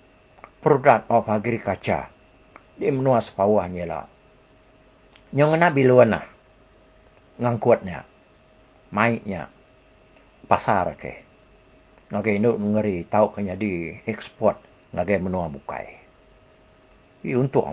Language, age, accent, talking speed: English, 60-79, Indonesian, 70 wpm